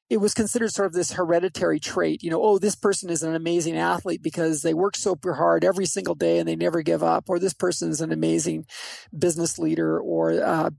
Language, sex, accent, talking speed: English, male, American, 220 wpm